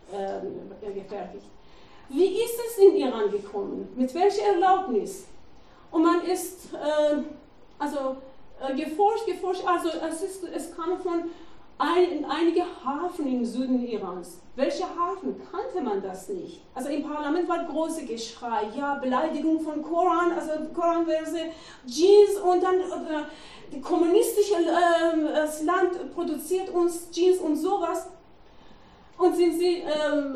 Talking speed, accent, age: 140 wpm, German, 40-59